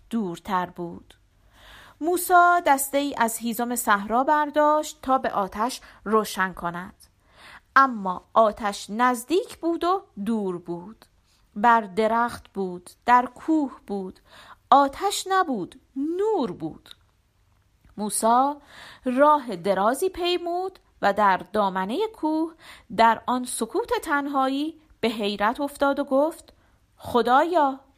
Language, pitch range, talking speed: Persian, 195-285 Hz, 105 wpm